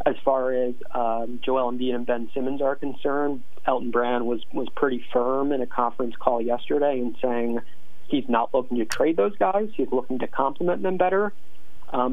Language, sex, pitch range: English, male, 115-130 Hz